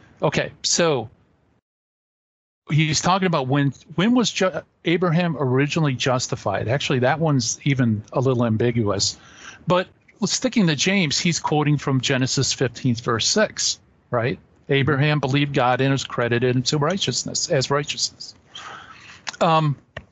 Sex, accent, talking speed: male, American, 125 wpm